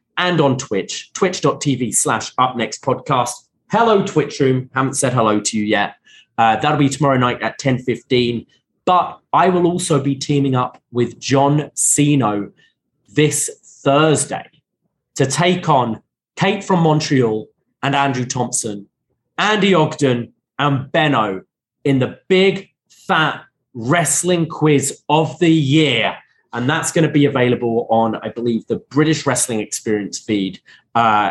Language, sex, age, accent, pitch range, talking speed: English, male, 20-39, British, 120-155 Hz, 135 wpm